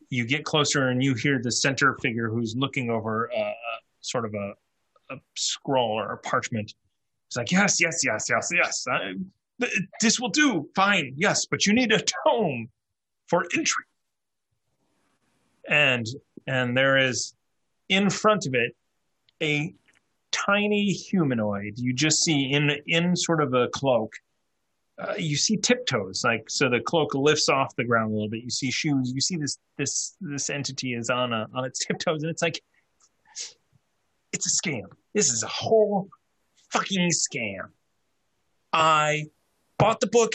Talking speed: 160 wpm